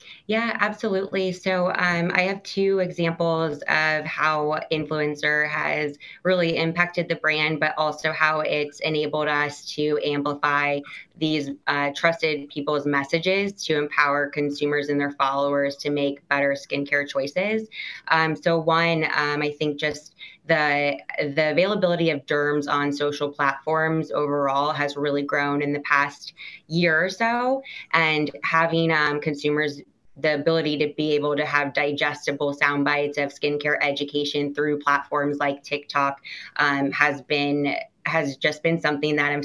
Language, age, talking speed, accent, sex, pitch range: English, 20-39, 145 wpm, American, female, 145-155 Hz